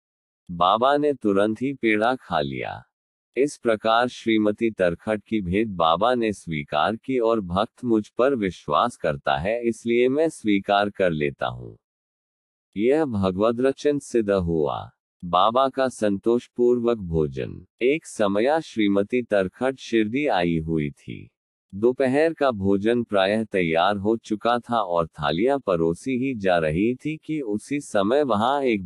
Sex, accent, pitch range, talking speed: male, native, 90-120 Hz, 140 wpm